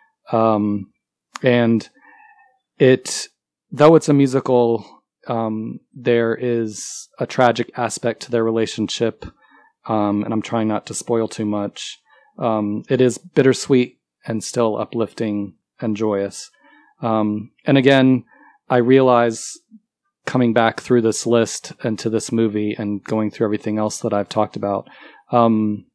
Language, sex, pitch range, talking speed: English, male, 105-125 Hz, 135 wpm